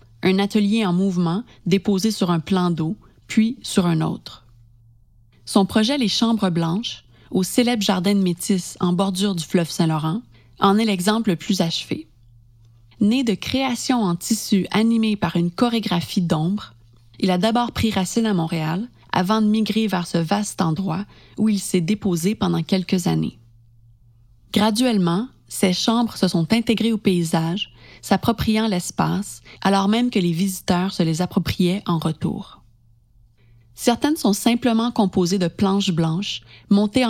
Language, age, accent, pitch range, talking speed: French, 30-49, Canadian, 165-210 Hz, 150 wpm